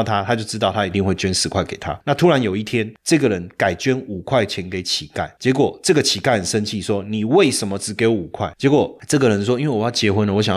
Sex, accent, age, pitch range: male, native, 30-49, 100-135 Hz